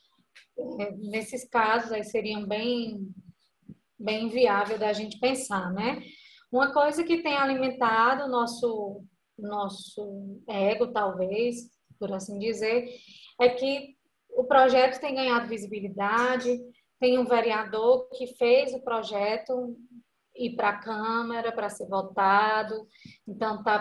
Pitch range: 210-250 Hz